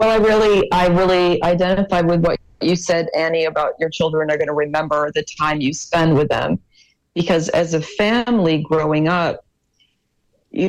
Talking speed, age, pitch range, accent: 175 wpm, 40-59, 160-190 Hz, American